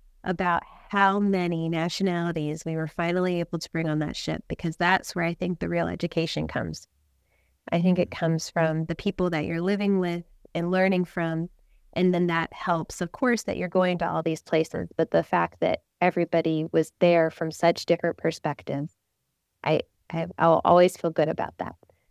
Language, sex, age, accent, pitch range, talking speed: English, female, 30-49, American, 165-200 Hz, 185 wpm